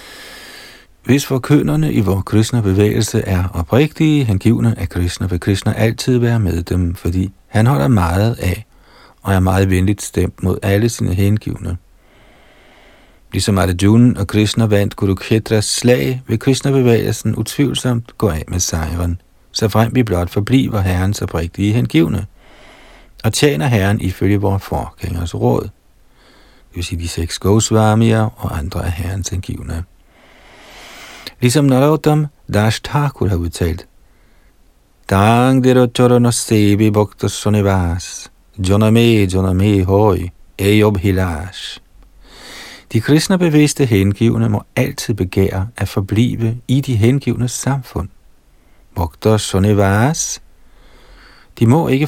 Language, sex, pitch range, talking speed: Danish, male, 95-120 Hz, 110 wpm